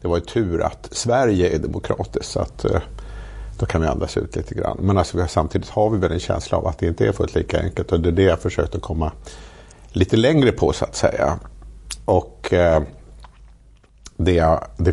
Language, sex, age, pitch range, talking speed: Swedish, male, 50-69, 80-100 Hz, 200 wpm